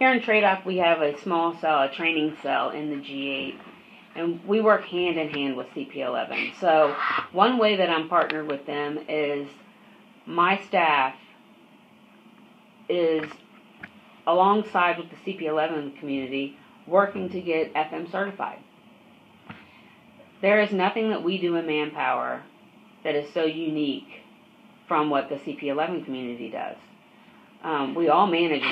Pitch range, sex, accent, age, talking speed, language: 150-195 Hz, female, American, 40-59, 135 wpm, English